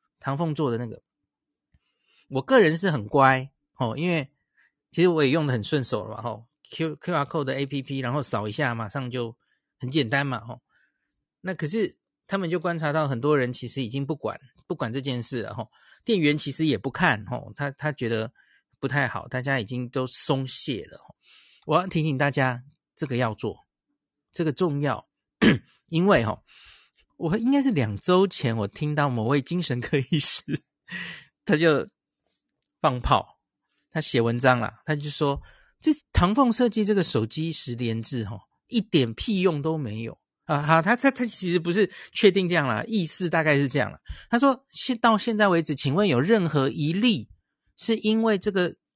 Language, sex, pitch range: Chinese, male, 130-180 Hz